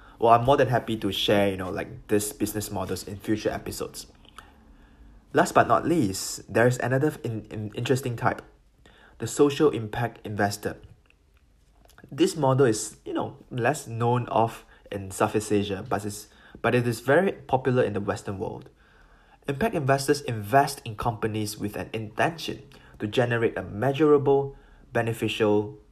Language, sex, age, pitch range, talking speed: English, male, 20-39, 105-130 Hz, 145 wpm